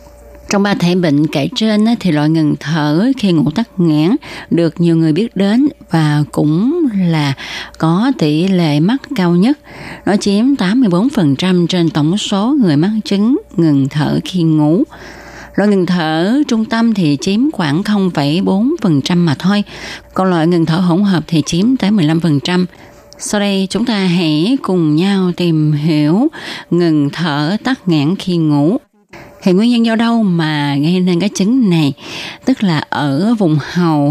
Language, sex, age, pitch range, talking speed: Vietnamese, female, 20-39, 155-205 Hz, 165 wpm